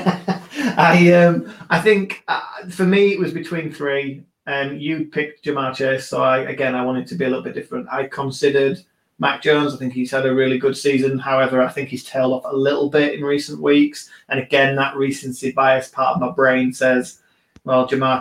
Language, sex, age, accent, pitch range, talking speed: English, male, 30-49, British, 125-150 Hz, 210 wpm